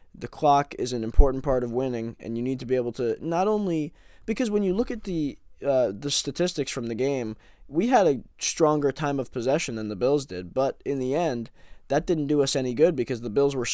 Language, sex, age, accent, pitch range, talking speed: English, male, 20-39, American, 125-160 Hz, 230 wpm